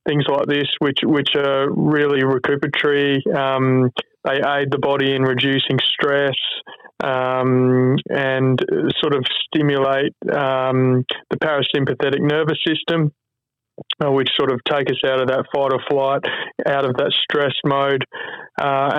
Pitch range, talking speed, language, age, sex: 135-150 Hz, 135 wpm, English, 20-39, male